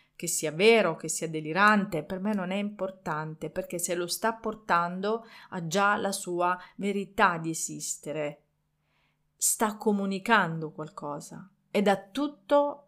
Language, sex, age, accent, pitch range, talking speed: Italian, female, 40-59, native, 160-210 Hz, 135 wpm